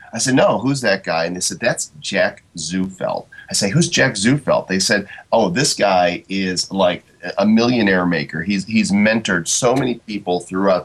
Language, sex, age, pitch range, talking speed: English, male, 30-49, 95-125 Hz, 190 wpm